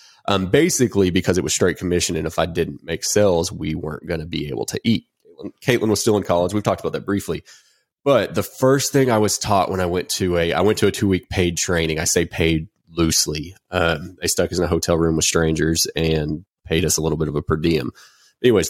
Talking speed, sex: 245 wpm, male